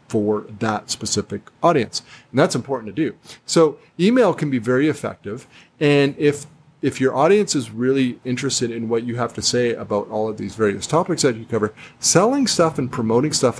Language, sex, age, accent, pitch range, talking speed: English, male, 40-59, American, 110-135 Hz, 190 wpm